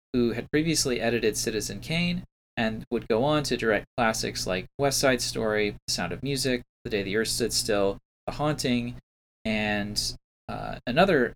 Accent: American